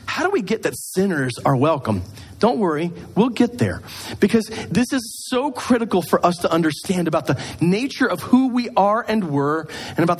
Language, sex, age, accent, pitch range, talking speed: English, male, 40-59, American, 145-220 Hz, 195 wpm